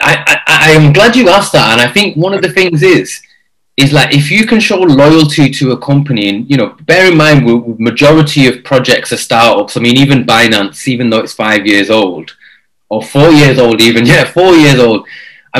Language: English